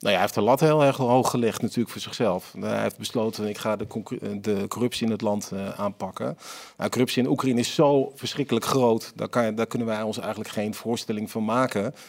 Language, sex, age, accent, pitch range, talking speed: Dutch, male, 40-59, Dutch, 115-135 Hz, 215 wpm